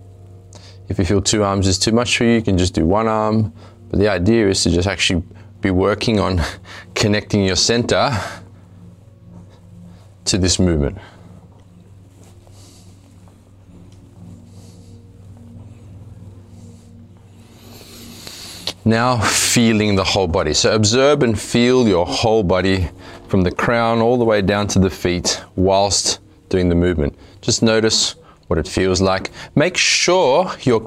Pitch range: 90-110 Hz